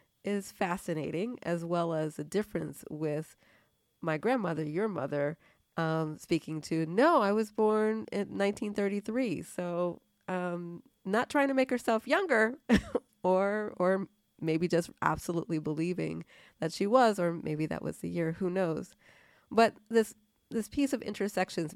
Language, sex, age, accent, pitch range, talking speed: English, female, 30-49, American, 160-200 Hz, 145 wpm